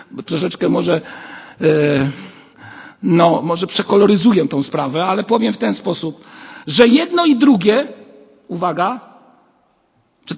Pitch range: 185-260 Hz